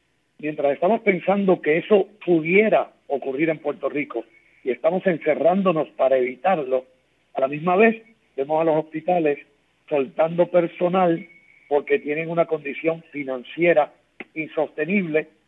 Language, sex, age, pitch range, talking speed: Spanish, male, 60-79, 135-170 Hz, 120 wpm